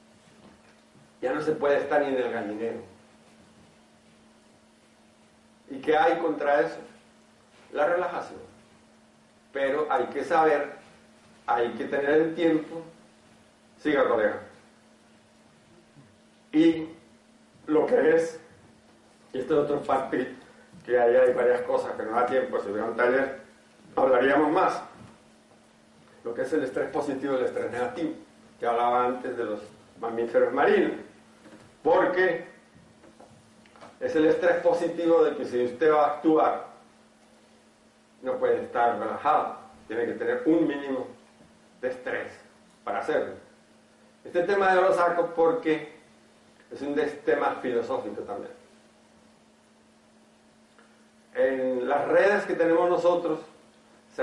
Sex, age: male, 50-69